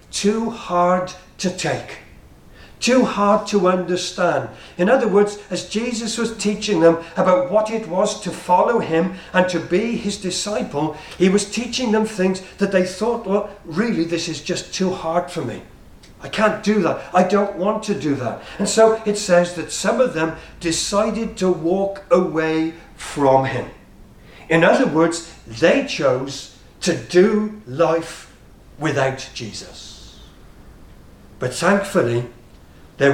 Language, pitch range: English, 140-195 Hz